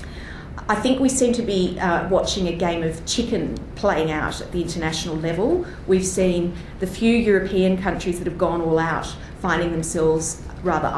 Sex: female